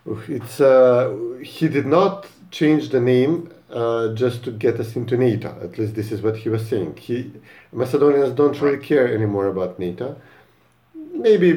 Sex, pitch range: male, 110-145 Hz